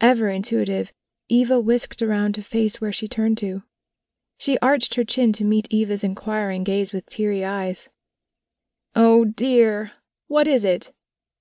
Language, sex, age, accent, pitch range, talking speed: English, female, 20-39, American, 205-235 Hz, 145 wpm